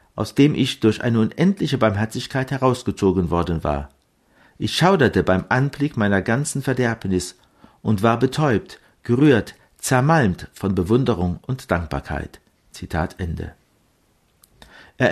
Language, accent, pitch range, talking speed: German, German, 95-145 Hz, 115 wpm